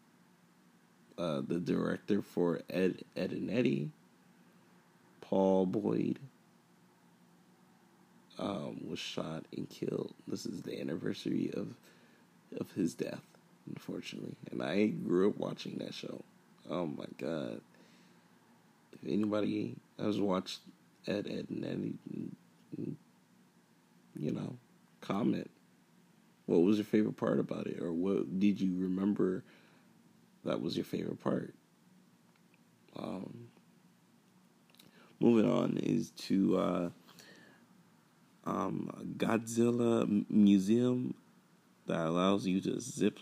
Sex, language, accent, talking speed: male, English, American, 100 wpm